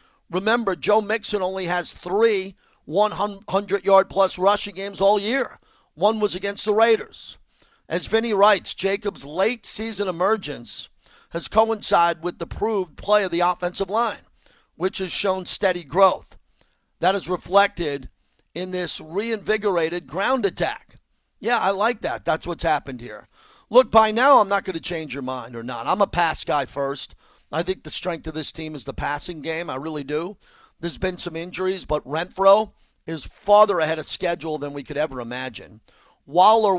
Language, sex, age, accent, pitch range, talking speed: English, male, 50-69, American, 160-200 Hz, 165 wpm